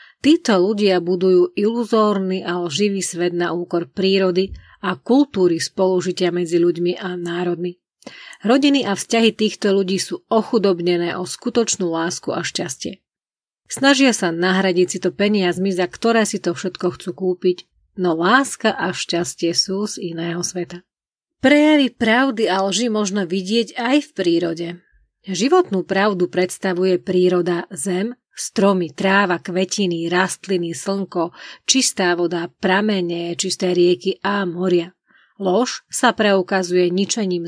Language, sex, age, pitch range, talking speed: Slovak, female, 40-59, 180-210 Hz, 130 wpm